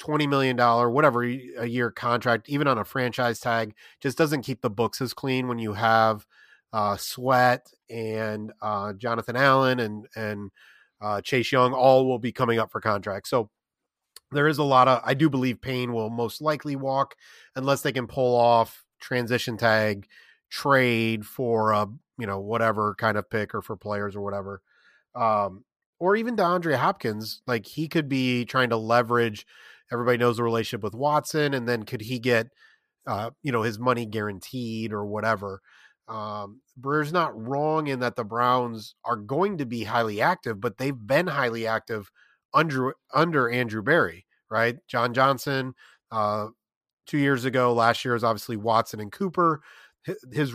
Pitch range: 110-130 Hz